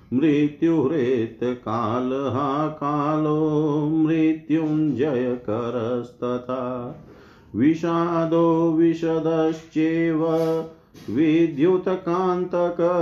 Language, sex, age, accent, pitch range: Hindi, male, 50-69, native, 125-160 Hz